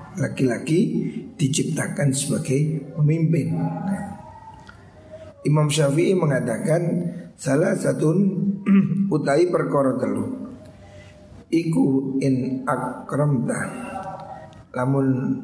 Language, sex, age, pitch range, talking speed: Indonesian, male, 50-69, 125-165 Hz, 65 wpm